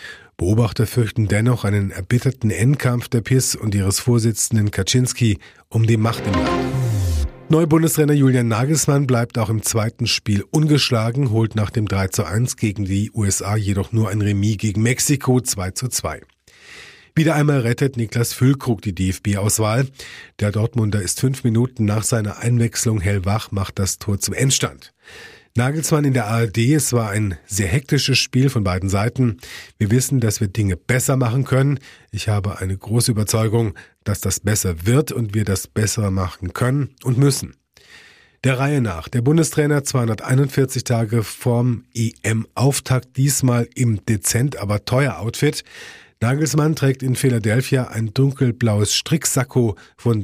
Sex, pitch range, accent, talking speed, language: male, 105-130 Hz, German, 150 wpm, German